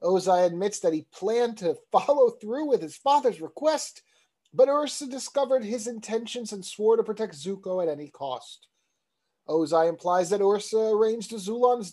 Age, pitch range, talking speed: 30-49, 170-225 Hz, 155 wpm